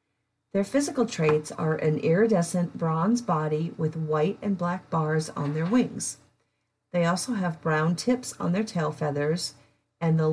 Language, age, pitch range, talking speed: English, 40-59, 150-195 Hz, 155 wpm